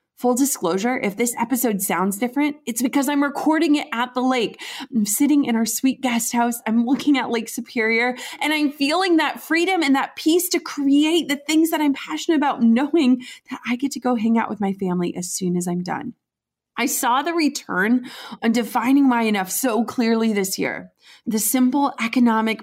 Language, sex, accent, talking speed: English, female, American, 195 wpm